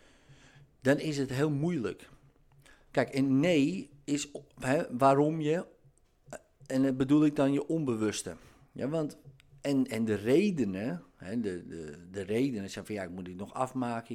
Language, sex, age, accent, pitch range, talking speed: Dutch, male, 50-69, Dutch, 110-145 Hz, 160 wpm